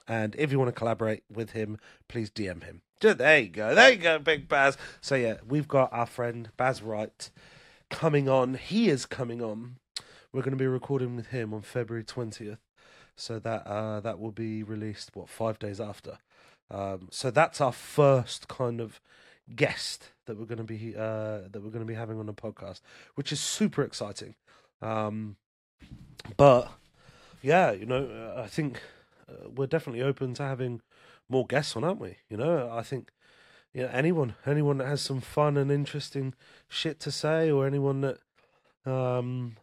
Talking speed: 180 wpm